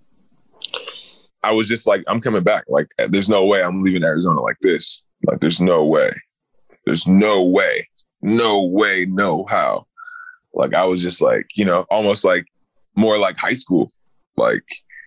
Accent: American